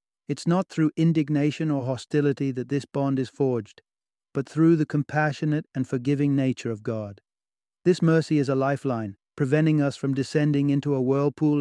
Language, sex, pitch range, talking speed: English, male, 130-155 Hz, 165 wpm